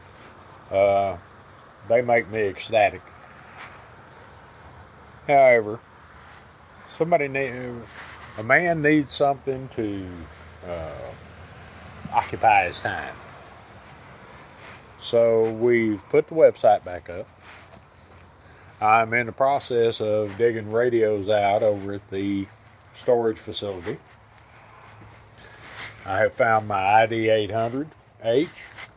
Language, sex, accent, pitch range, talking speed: English, male, American, 105-125 Hz, 85 wpm